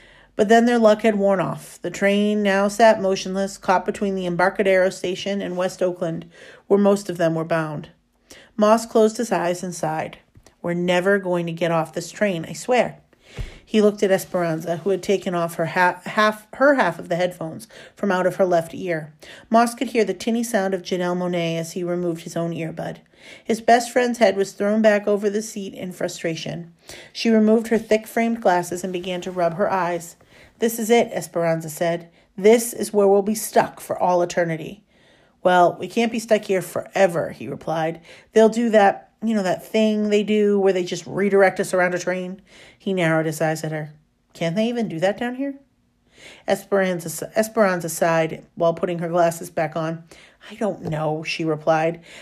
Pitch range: 170-210 Hz